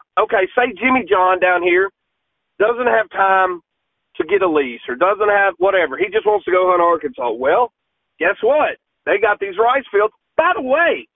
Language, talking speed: English, 190 wpm